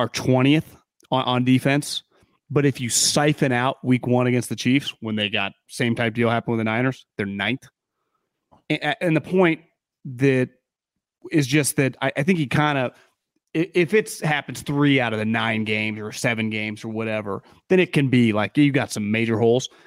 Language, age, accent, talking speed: English, 30-49, American, 195 wpm